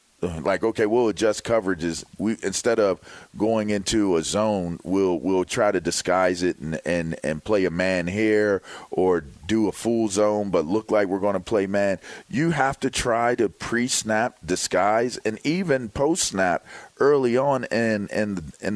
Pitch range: 95-115 Hz